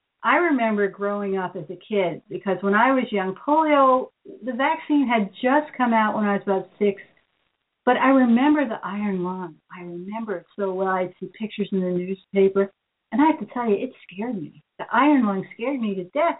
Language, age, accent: English, 60-79, American